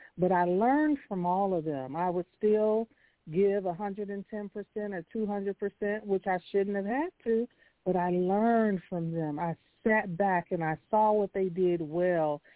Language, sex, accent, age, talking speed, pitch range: English, female, American, 50-69, 165 wpm, 170-220 Hz